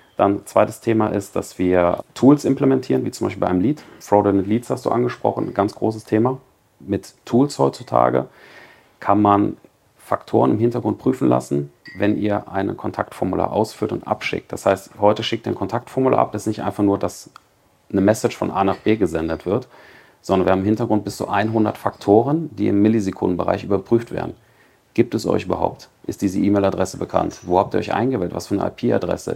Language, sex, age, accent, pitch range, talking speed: German, male, 40-59, German, 90-110 Hz, 190 wpm